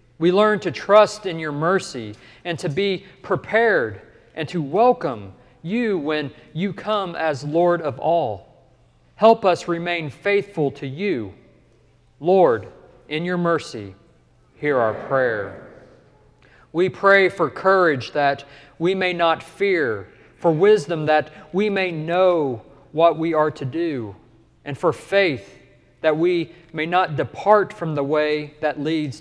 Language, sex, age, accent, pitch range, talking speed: English, male, 40-59, American, 125-170 Hz, 140 wpm